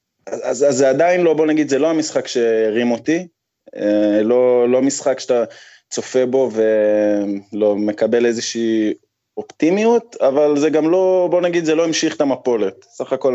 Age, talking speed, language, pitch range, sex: 20-39, 155 wpm, Hebrew, 105-145 Hz, male